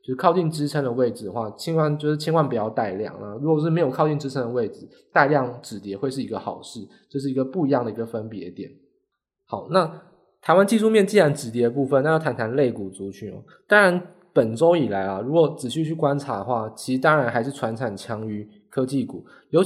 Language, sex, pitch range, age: Chinese, male, 120-165 Hz, 20-39